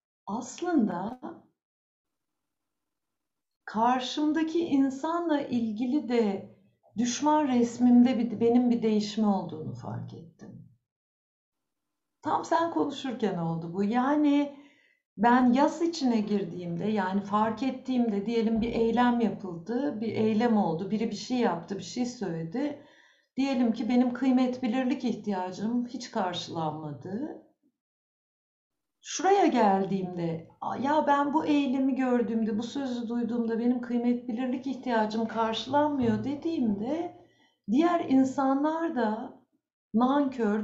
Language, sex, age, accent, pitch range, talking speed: Turkish, female, 60-79, native, 215-275 Hz, 100 wpm